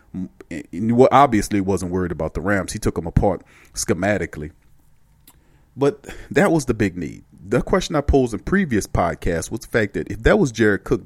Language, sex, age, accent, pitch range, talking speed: English, male, 40-59, American, 95-125 Hz, 180 wpm